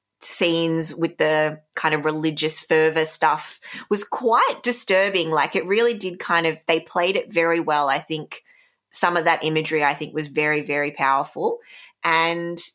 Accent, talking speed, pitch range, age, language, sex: Australian, 165 wpm, 160-205 Hz, 20-39, English, female